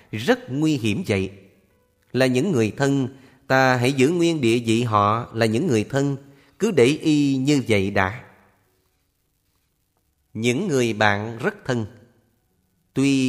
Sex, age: male, 30-49